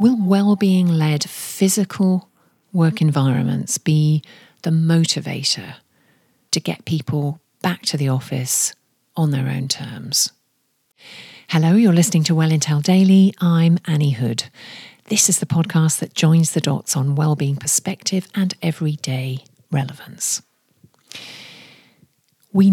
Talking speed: 115 wpm